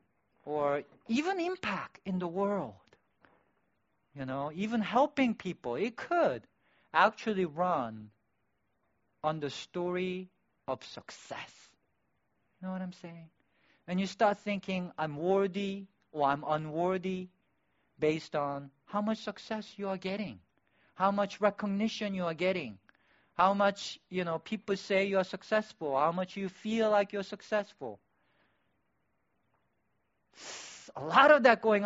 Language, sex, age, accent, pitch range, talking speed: English, male, 50-69, Japanese, 140-200 Hz, 130 wpm